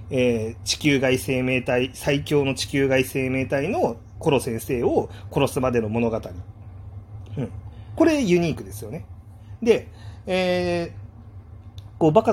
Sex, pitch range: male, 105-145 Hz